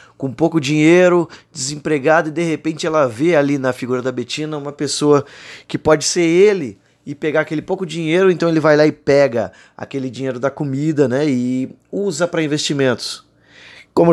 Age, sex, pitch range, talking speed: 20-39, male, 130-180 Hz, 175 wpm